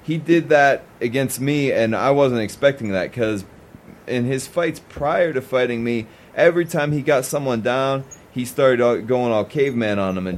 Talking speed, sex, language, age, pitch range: 185 wpm, male, English, 30-49, 105-135 Hz